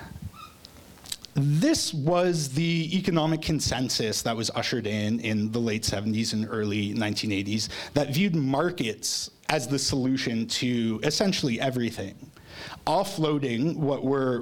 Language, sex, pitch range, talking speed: English, male, 110-150 Hz, 115 wpm